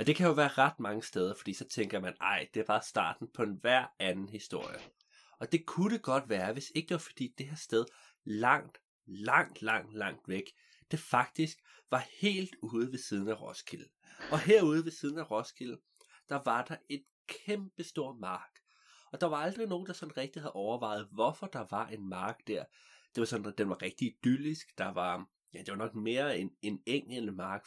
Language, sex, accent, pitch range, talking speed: Danish, male, native, 110-160 Hz, 205 wpm